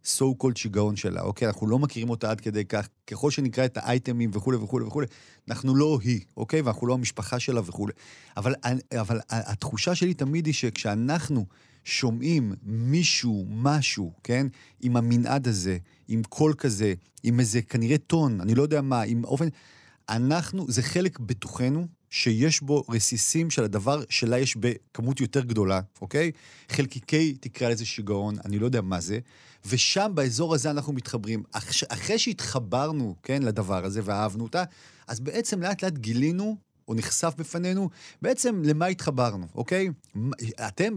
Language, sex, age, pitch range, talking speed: Hebrew, male, 40-59, 110-150 Hz, 150 wpm